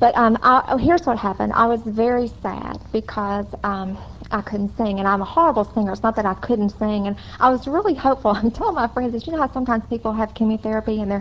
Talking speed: 245 wpm